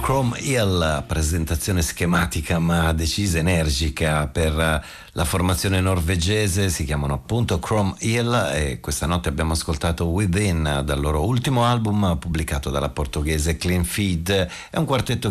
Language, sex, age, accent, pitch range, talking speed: Italian, male, 40-59, native, 80-100 Hz, 135 wpm